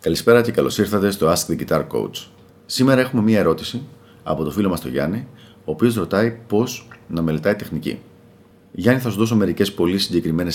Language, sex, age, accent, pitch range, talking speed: Greek, male, 40-59, native, 80-115 Hz, 190 wpm